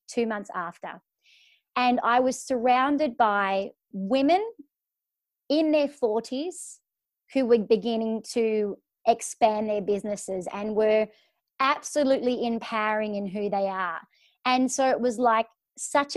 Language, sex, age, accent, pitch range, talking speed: English, female, 30-49, Australian, 215-265 Hz, 125 wpm